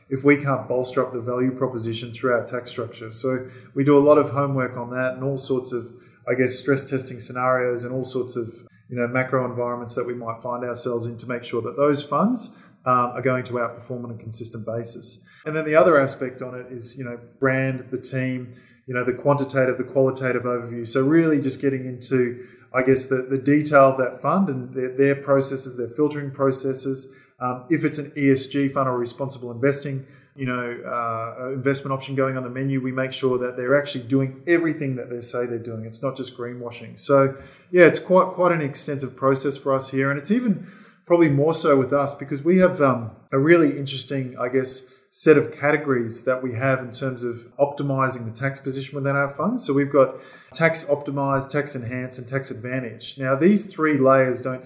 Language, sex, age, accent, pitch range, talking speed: English, male, 20-39, Australian, 125-140 Hz, 210 wpm